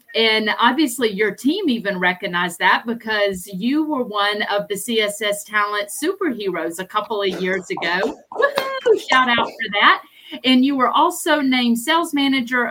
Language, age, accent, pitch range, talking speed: English, 40-59, American, 200-245 Hz, 155 wpm